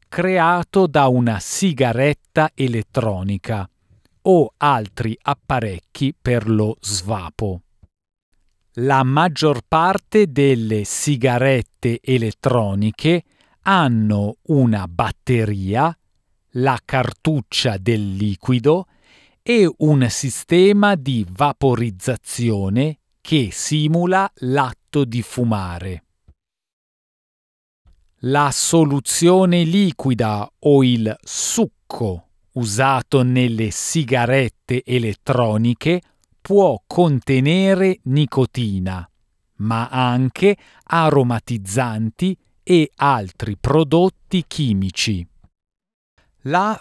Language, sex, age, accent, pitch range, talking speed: Italian, male, 40-59, native, 110-155 Hz, 70 wpm